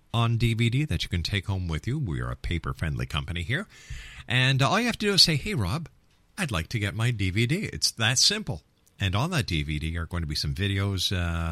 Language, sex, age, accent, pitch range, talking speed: English, male, 50-69, American, 85-125 Hz, 235 wpm